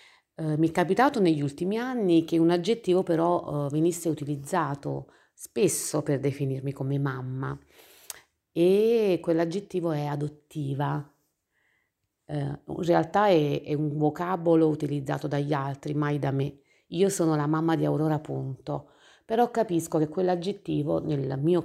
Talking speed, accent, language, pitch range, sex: 130 wpm, native, Italian, 145-165 Hz, female